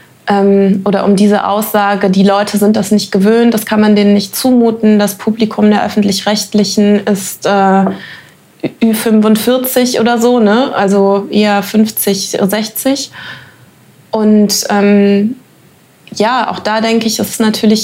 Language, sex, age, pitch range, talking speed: German, female, 20-39, 205-230 Hz, 130 wpm